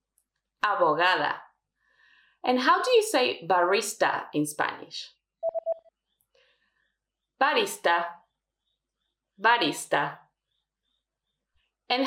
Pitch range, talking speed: 195-330 Hz, 60 wpm